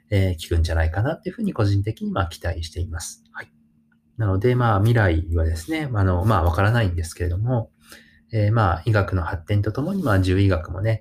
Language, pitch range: Japanese, 90-115 Hz